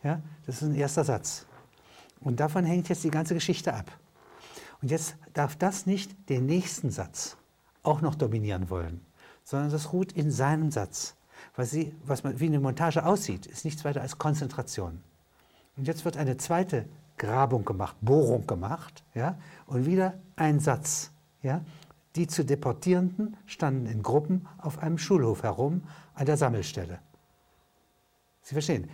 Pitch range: 125-165 Hz